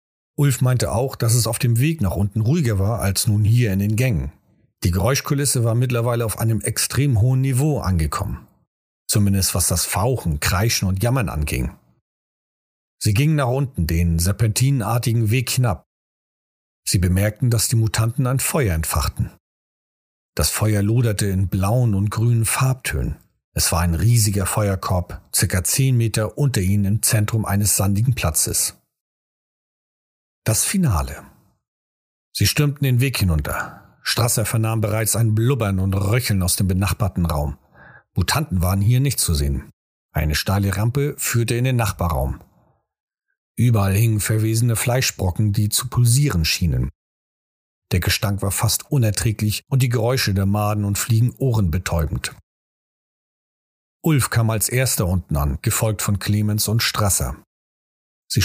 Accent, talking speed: German, 145 wpm